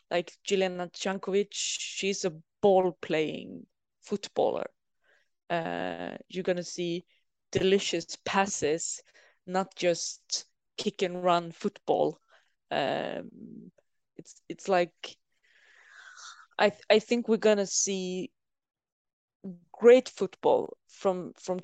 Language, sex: English, female